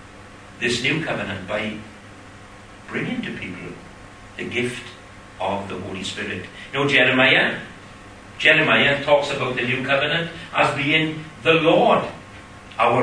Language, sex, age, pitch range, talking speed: English, male, 60-79, 100-145 Hz, 125 wpm